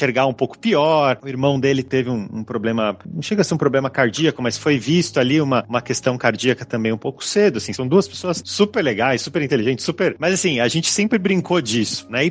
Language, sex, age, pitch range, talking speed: Portuguese, male, 30-49, 110-160 Hz, 235 wpm